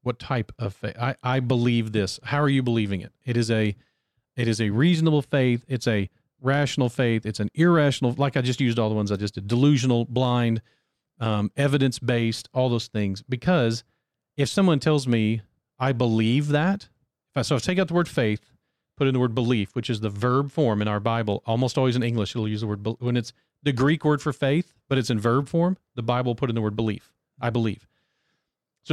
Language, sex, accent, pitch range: English, male, American, 110-140 Hz